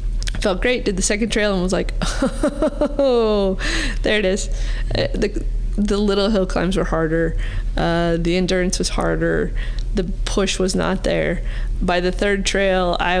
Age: 20-39